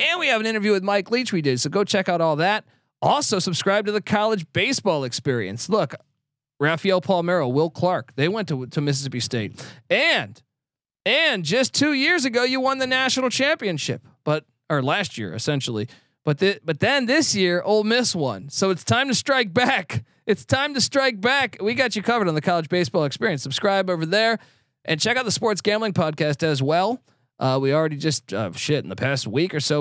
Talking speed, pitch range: 205 wpm, 145-205 Hz